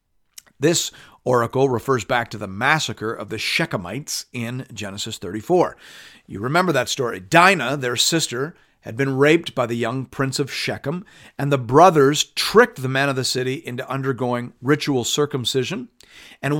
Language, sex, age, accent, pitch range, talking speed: English, male, 50-69, American, 110-140 Hz, 155 wpm